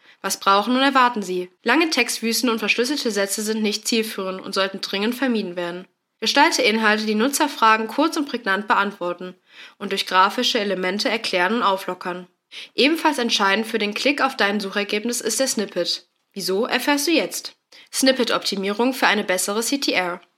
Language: German